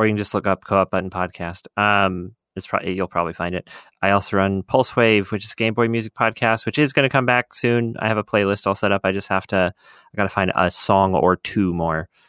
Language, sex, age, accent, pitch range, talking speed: English, male, 30-49, American, 95-120 Hz, 265 wpm